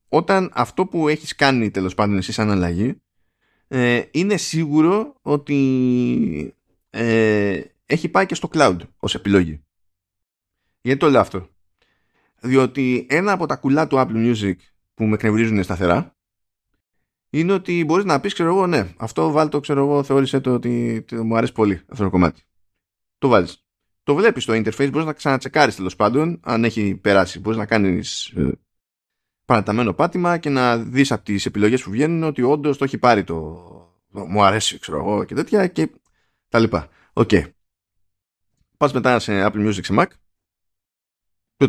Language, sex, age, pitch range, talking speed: Greek, male, 20-39, 100-145 Hz, 165 wpm